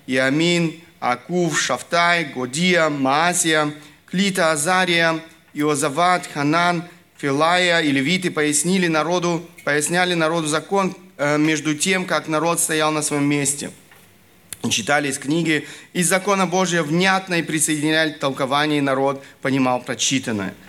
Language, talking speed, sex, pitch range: Russian, 115 wpm, male, 145-175 Hz